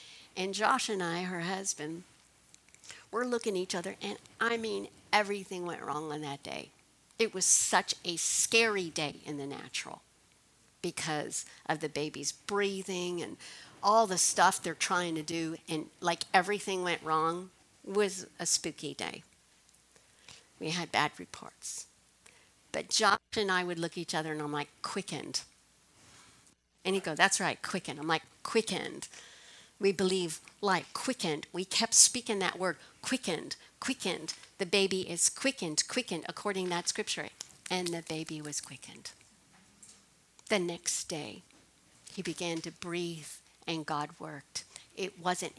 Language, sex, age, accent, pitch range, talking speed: English, female, 50-69, American, 160-195 Hz, 150 wpm